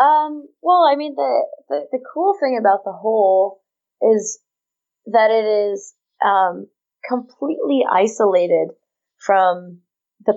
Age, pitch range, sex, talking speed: 20-39, 180-220 Hz, female, 120 wpm